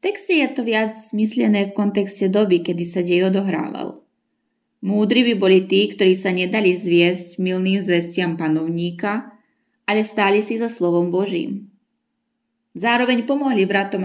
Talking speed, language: 140 wpm, Slovak